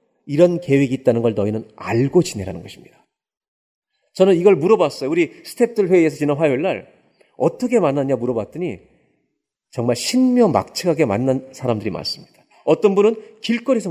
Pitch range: 130-215 Hz